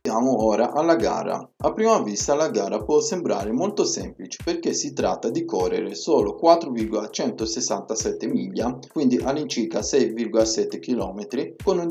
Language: Italian